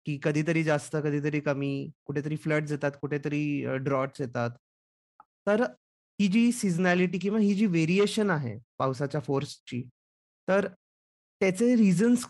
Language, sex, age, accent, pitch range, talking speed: Marathi, male, 30-49, native, 135-180 Hz, 85 wpm